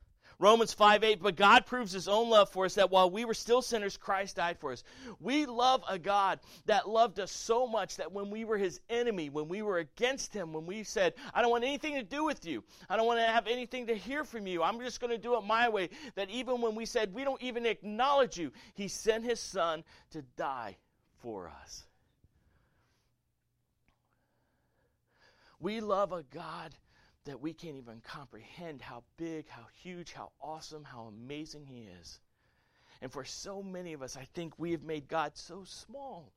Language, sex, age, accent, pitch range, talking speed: English, male, 40-59, American, 145-220 Hz, 200 wpm